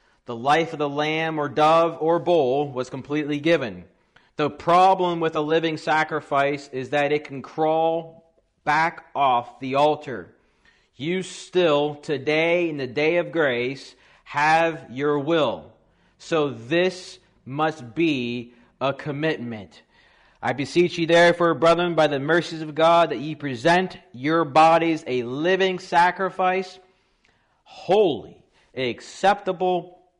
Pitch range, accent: 145-175 Hz, American